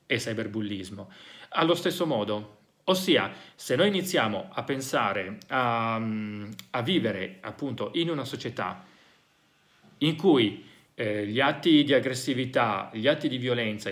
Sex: male